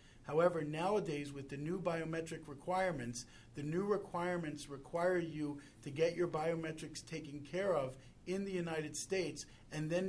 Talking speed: 150 wpm